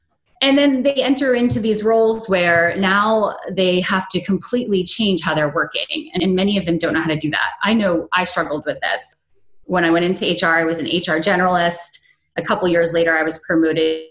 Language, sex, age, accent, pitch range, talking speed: English, female, 20-39, American, 165-210 Hz, 220 wpm